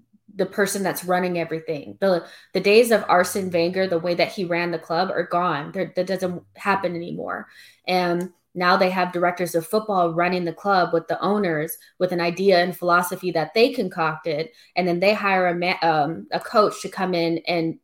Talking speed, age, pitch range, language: 200 wpm, 20-39, 165-185 Hz, English